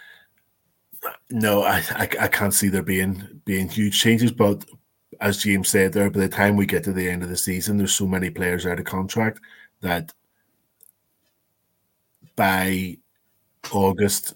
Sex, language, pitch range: male, English, 95-110 Hz